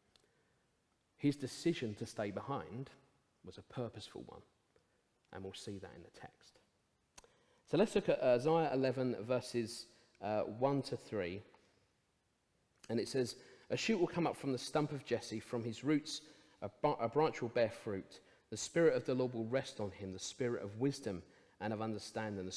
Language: English